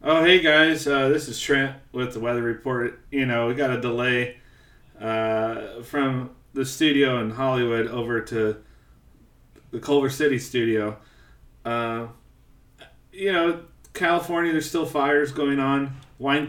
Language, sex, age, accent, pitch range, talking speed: English, male, 30-49, American, 110-135 Hz, 140 wpm